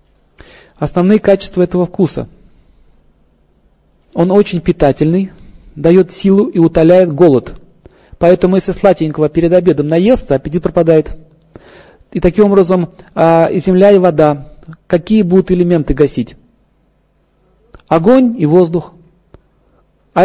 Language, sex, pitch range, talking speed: Russian, male, 155-195 Hz, 105 wpm